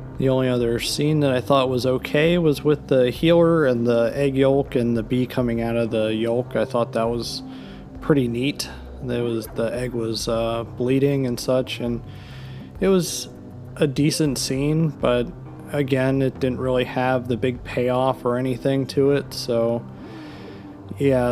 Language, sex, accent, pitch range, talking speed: English, male, American, 115-135 Hz, 165 wpm